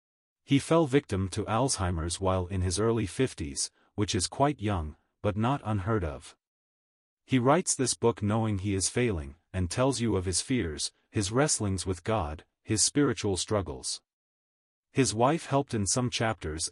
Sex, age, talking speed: male, 40-59, 160 wpm